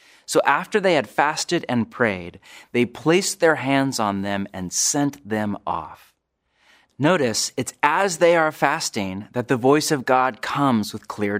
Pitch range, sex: 115-155 Hz, male